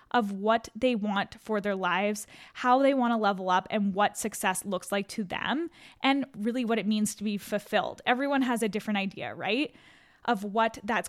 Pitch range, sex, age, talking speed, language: 215-255 Hz, female, 10-29, 200 wpm, English